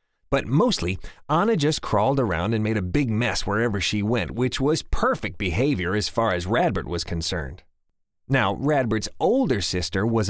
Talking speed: 170 wpm